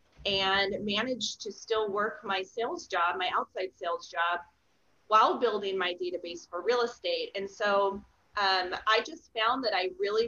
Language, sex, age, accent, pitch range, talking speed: English, female, 30-49, American, 190-245 Hz, 165 wpm